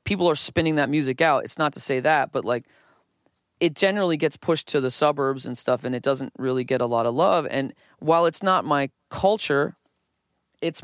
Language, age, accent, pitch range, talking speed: English, 20-39, American, 130-160 Hz, 210 wpm